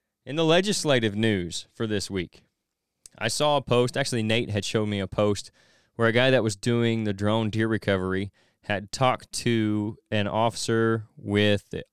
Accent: American